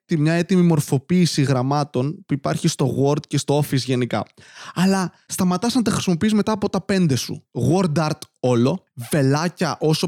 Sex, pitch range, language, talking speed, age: male, 135-170 Hz, Greek, 160 wpm, 20-39